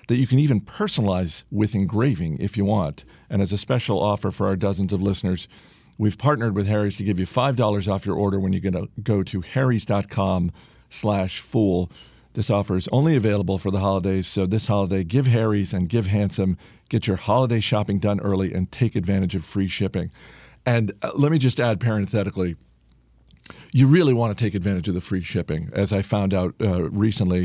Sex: male